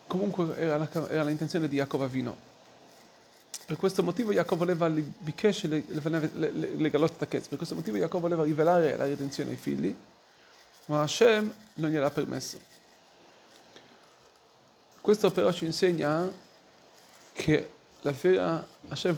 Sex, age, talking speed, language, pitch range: male, 40-59, 130 wpm, Italian, 145-175 Hz